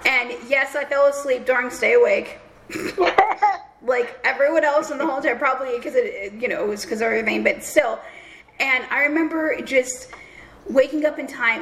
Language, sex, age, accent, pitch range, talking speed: English, female, 10-29, American, 235-310 Hz, 175 wpm